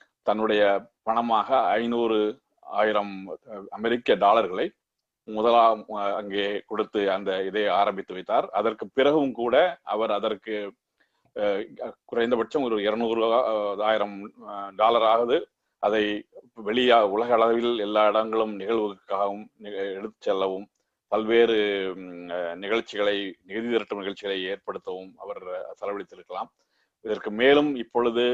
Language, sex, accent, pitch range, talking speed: Tamil, male, native, 100-115 Hz, 90 wpm